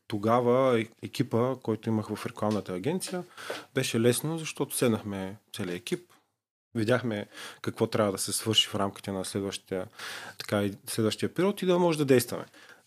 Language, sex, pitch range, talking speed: Bulgarian, male, 105-135 Hz, 150 wpm